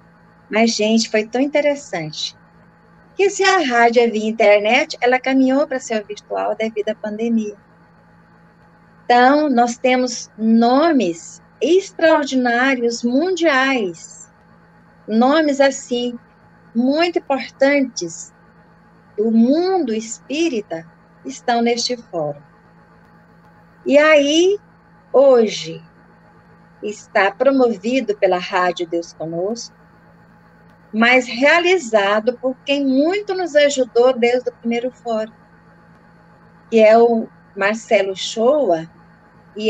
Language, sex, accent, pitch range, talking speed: Portuguese, female, Brazilian, 200-270 Hz, 90 wpm